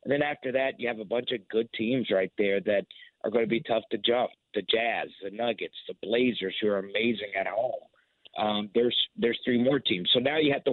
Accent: American